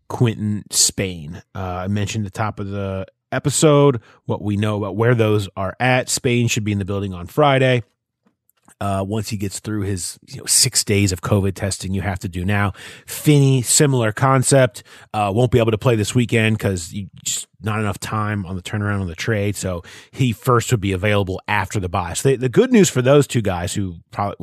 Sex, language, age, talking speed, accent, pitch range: male, English, 30-49, 210 wpm, American, 95-125 Hz